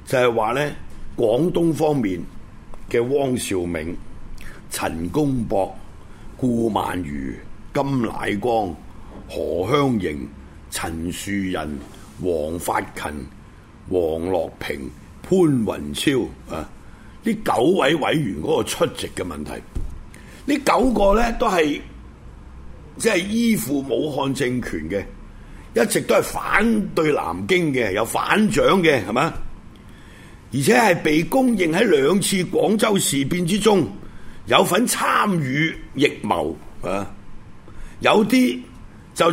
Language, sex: Chinese, male